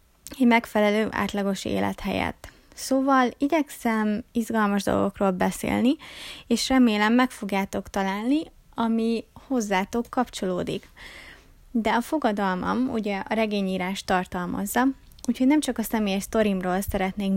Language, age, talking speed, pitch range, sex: Hungarian, 20-39, 110 wpm, 200-255 Hz, female